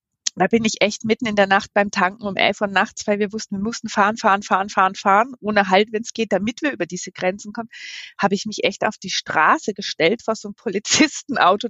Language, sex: German, female